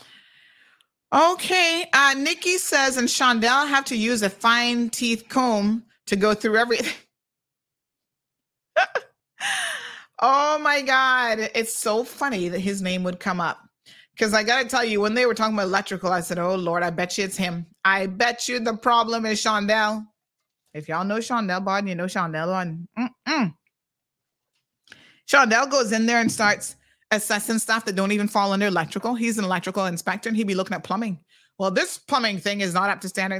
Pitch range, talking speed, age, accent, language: 195-260 Hz, 175 wpm, 30-49, American, English